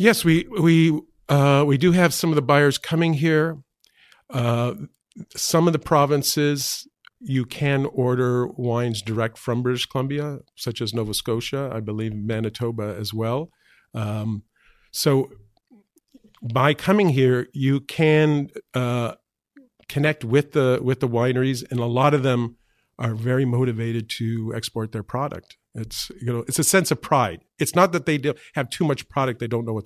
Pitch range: 115-145 Hz